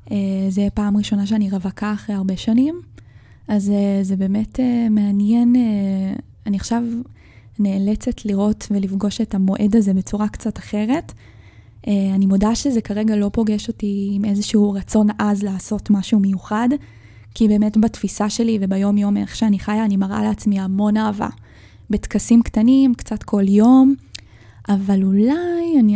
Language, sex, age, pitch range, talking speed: Hebrew, female, 20-39, 195-220 Hz, 150 wpm